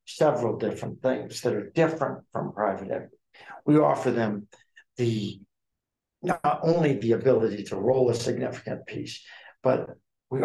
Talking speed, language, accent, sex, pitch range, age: 140 wpm, English, American, male, 115-160 Hz, 60-79